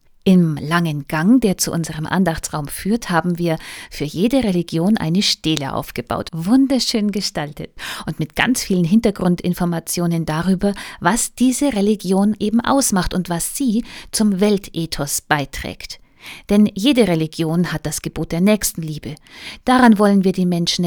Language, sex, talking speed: German, female, 140 wpm